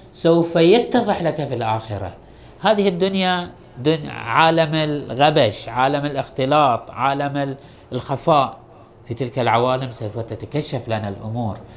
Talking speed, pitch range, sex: 105 wpm, 115-150 Hz, male